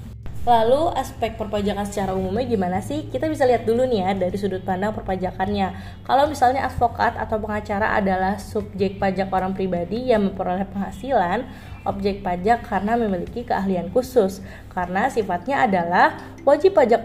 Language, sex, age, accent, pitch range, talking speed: Indonesian, female, 20-39, native, 185-235 Hz, 145 wpm